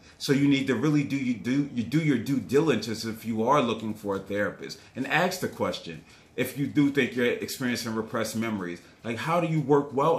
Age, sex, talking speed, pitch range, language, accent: 30-49, male, 225 wpm, 110-145 Hz, English, American